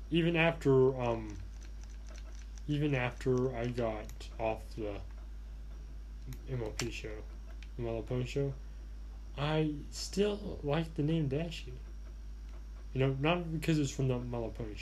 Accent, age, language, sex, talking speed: American, 10-29, English, male, 115 wpm